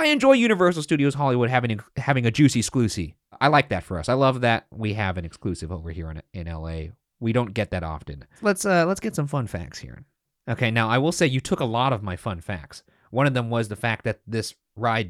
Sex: male